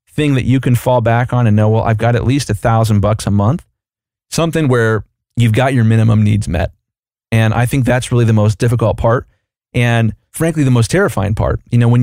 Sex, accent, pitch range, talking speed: male, American, 110-125 Hz, 225 wpm